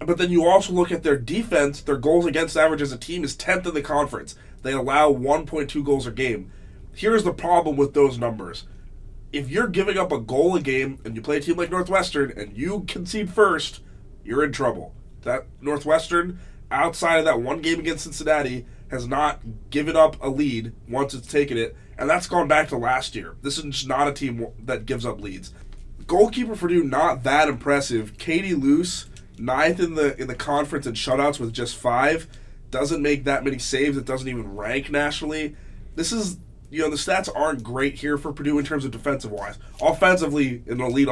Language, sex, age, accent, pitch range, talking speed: English, male, 20-39, American, 120-155 Hz, 200 wpm